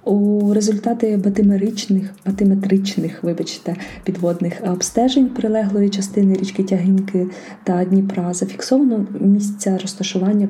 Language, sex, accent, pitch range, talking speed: Ukrainian, female, native, 185-210 Hz, 90 wpm